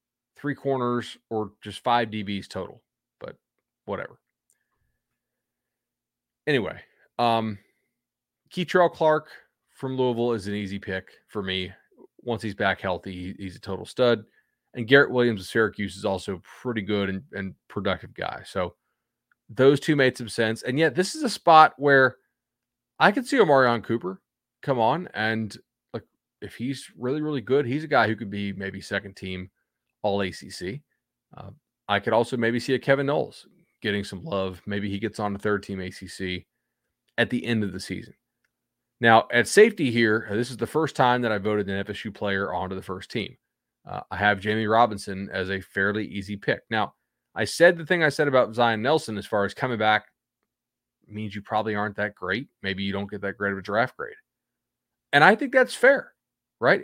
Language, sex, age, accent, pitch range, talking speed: English, male, 30-49, American, 100-130 Hz, 185 wpm